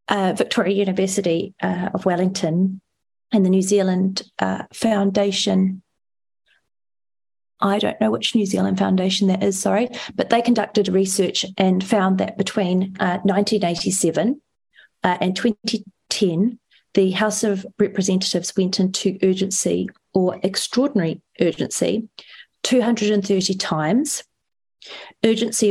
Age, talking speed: 40-59, 110 wpm